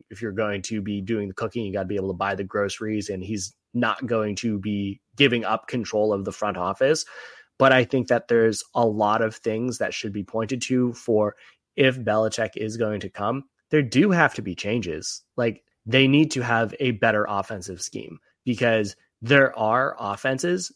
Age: 20-39